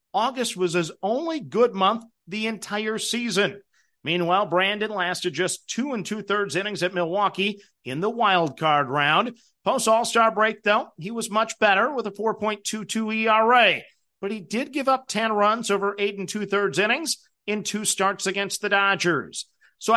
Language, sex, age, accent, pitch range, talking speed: English, male, 50-69, American, 180-225 Hz, 160 wpm